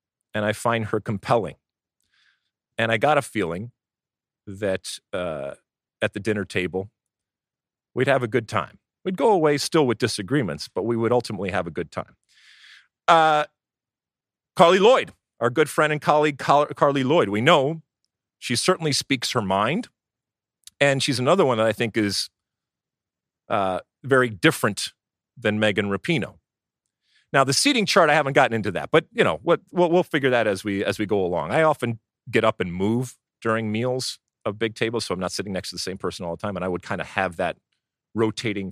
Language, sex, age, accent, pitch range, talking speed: English, male, 40-59, American, 105-140 Hz, 185 wpm